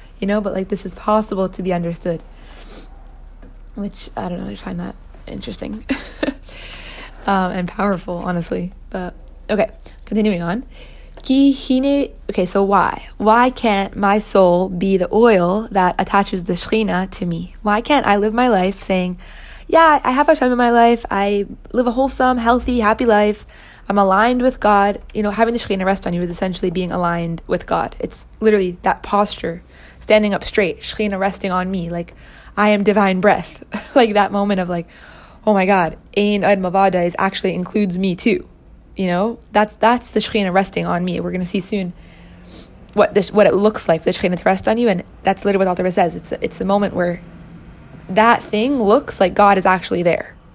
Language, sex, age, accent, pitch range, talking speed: English, female, 20-39, American, 185-220 Hz, 190 wpm